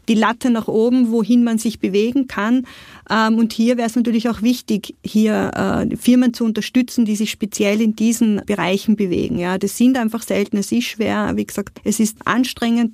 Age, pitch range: 30-49, 205-235 Hz